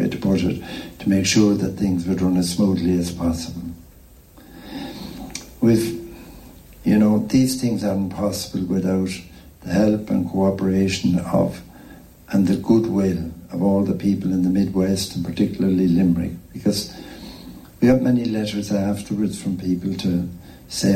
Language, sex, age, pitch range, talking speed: English, male, 60-79, 85-100 Hz, 145 wpm